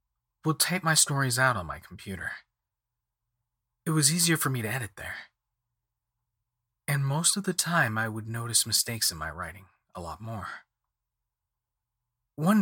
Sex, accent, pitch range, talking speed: male, American, 105-135 Hz, 150 wpm